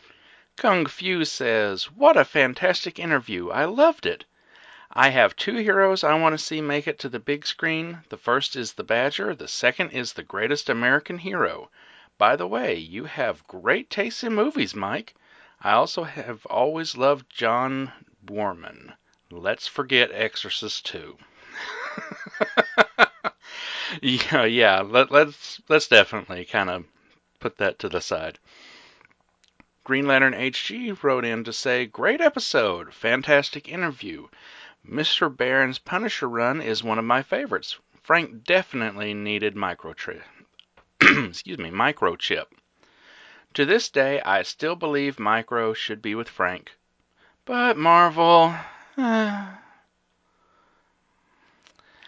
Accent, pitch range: American, 115-180 Hz